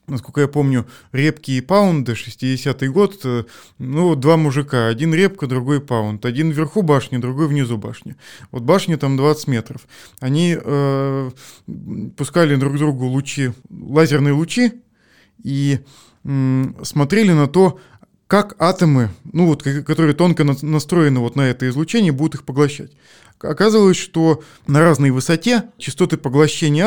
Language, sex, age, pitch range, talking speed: Russian, male, 20-39, 130-165 Hz, 135 wpm